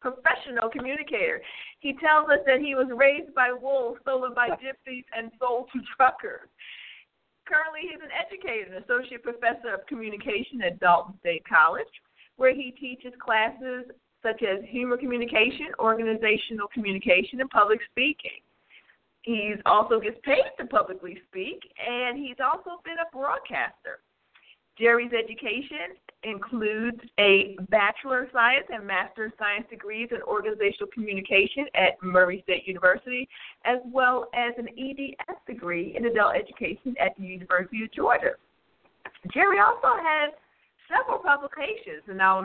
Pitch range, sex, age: 205-270 Hz, female, 50-69